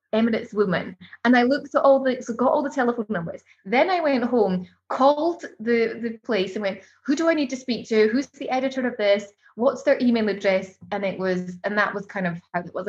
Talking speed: 240 wpm